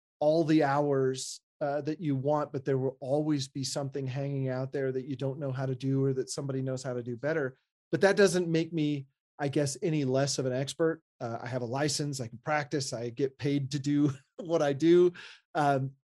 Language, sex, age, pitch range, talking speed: English, male, 30-49, 130-160 Hz, 225 wpm